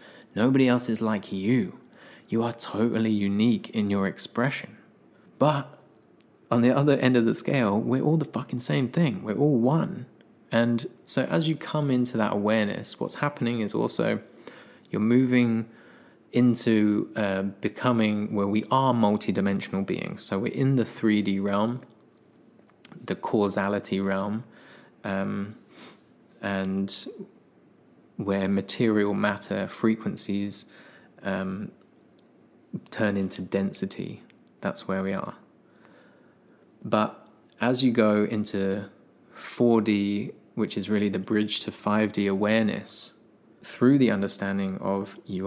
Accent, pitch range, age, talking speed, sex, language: British, 100-115 Hz, 20-39, 125 wpm, male, English